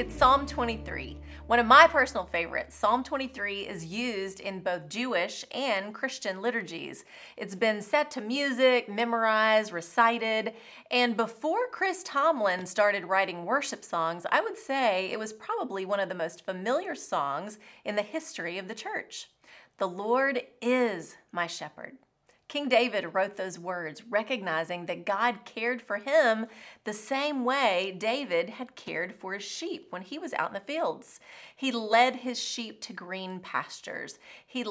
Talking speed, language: 155 wpm, English